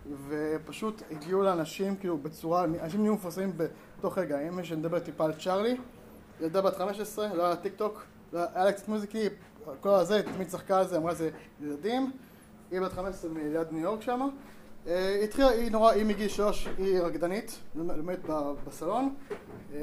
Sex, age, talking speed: male, 20-39, 165 wpm